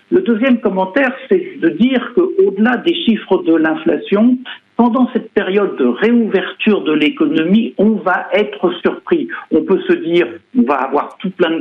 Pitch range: 190-275 Hz